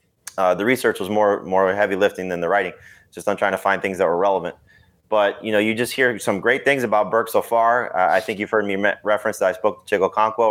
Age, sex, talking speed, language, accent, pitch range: 20-39, male, 270 wpm, English, American, 100-110 Hz